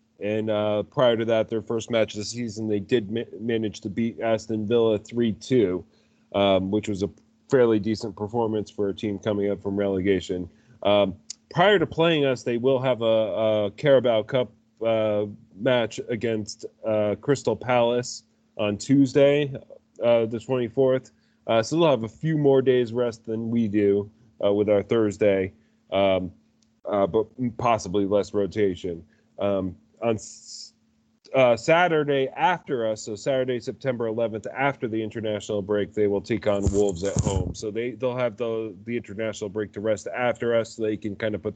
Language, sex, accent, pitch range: English, male, American, 105-125 Hz